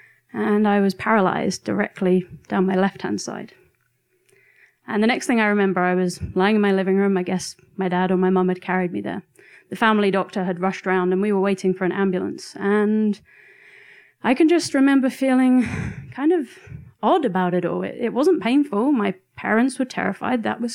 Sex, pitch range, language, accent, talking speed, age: female, 190-245 Hz, English, British, 195 wpm, 30-49